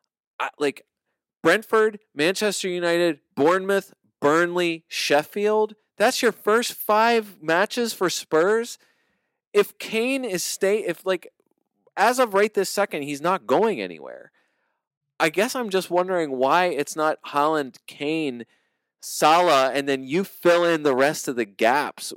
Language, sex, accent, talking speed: English, male, American, 135 wpm